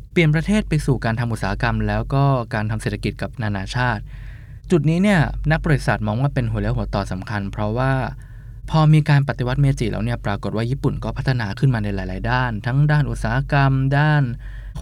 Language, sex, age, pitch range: Thai, male, 20-39, 110-145 Hz